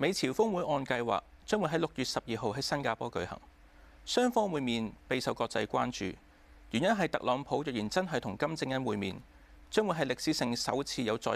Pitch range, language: 100-155 Hz, Chinese